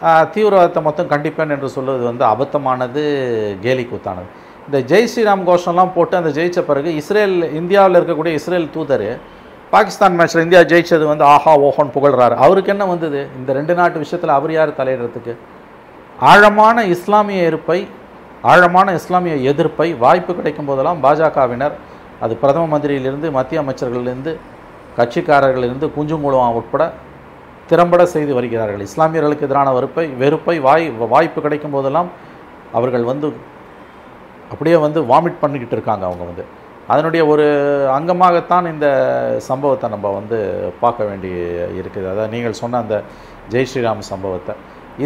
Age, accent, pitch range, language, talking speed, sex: 50-69, native, 130-170 Hz, Tamil, 130 wpm, male